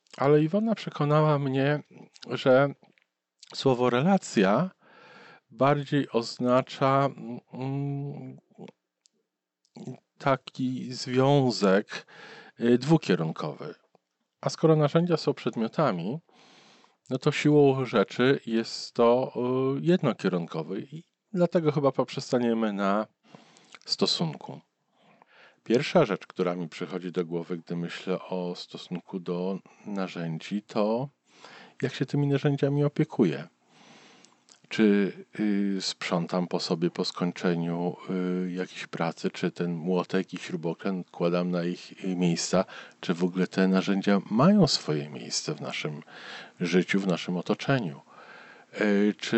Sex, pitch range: male, 90-140 Hz